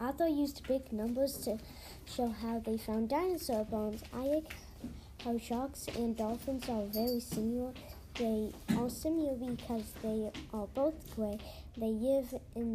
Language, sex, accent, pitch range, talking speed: English, female, American, 215-265 Hz, 145 wpm